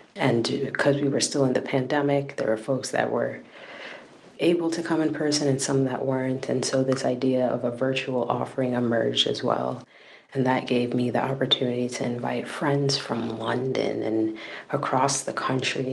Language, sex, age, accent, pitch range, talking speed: English, female, 30-49, American, 125-140 Hz, 180 wpm